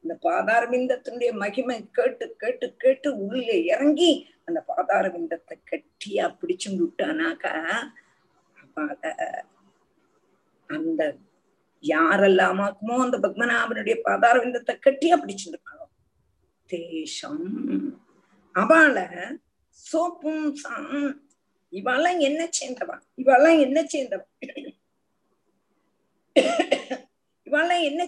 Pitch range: 255-320 Hz